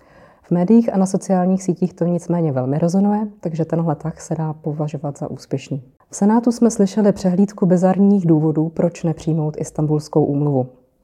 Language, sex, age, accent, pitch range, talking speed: Czech, female, 20-39, native, 160-190 Hz, 160 wpm